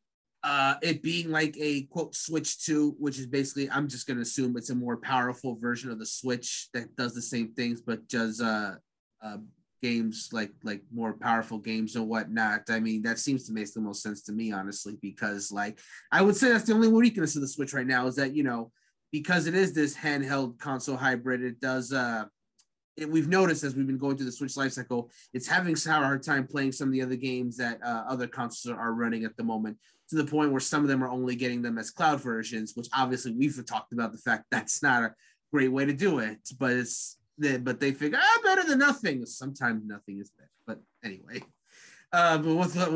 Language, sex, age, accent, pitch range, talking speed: English, male, 30-49, American, 120-150 Hz, 225 wpm